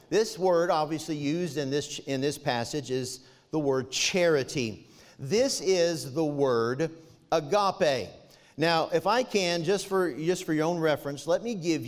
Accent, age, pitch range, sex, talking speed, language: American, 50-69, 140-175 Hz, male, 160 wpm, English